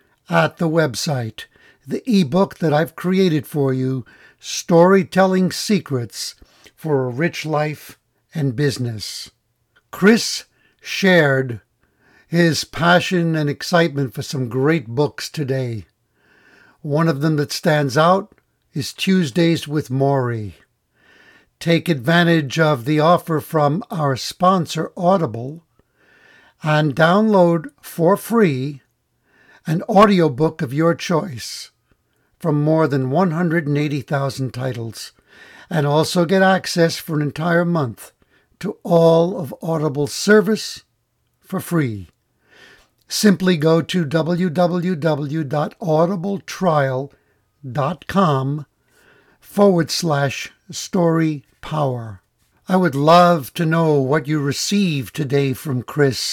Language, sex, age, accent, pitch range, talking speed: English, male, 60-79, American, 140-175 Hz, 100 wpm